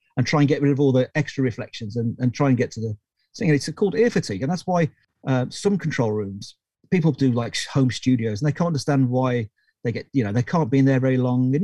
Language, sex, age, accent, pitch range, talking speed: English, male, 40-59, British, 120-155 Hz, 270 wpm